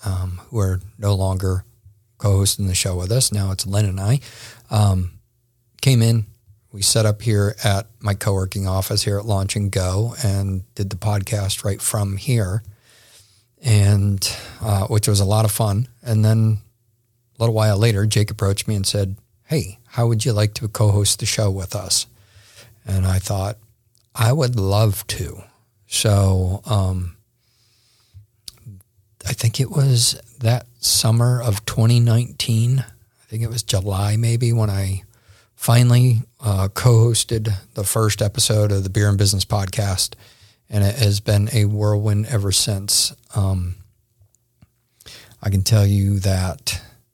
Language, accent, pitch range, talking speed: English, American, 100-115 Hz, 150 wpm